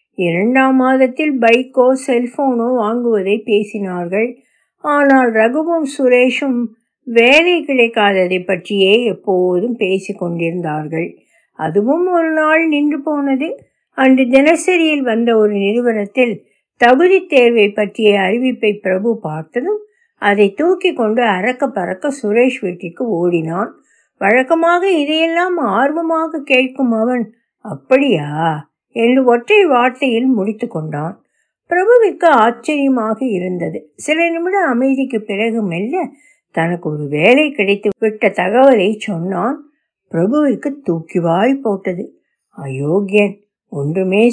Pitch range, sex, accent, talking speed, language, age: 200-270 Hz, female, native, 95 wpm, Tamil, 60-79